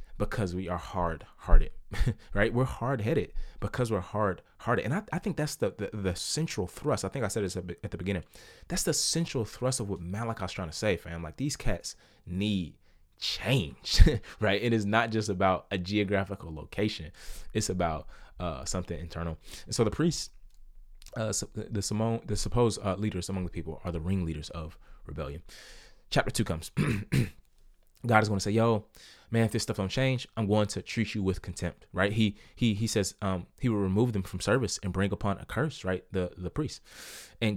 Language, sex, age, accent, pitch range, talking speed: English, male, 20-39, American, 95-125 Hz, 195 wpm